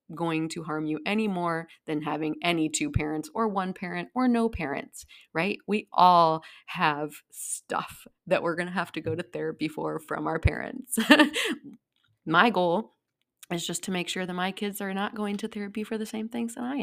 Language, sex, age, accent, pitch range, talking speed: English, female, 30-49, American, 155-205 Hz, 200 wpm